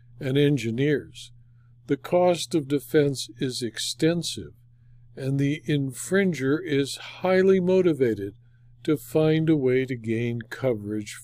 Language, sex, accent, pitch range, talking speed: English, male, American, 120-155 Hz, 110 wpm